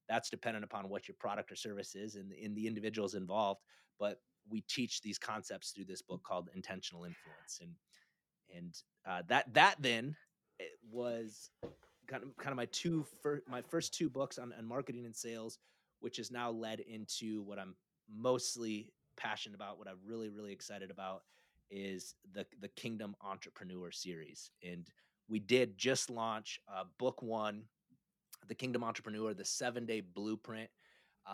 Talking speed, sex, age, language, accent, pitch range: 165 wpm, male, 30-49, English, American, 105-135 Hz